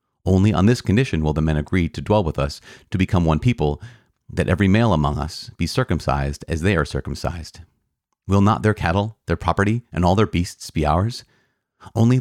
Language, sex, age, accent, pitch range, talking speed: English, male, 40-59, American, 75-100 Hz, 195 wpm